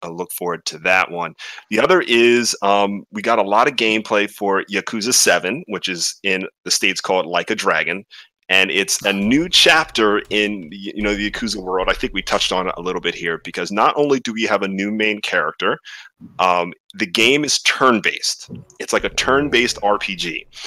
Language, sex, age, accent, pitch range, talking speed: English, male, 30-49, American, 100-135 Hz, 200 wpm